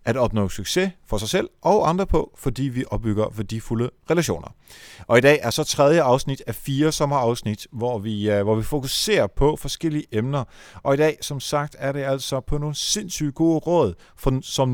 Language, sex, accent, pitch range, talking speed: Danish, male, native, 110-145 Hz, 195 wpm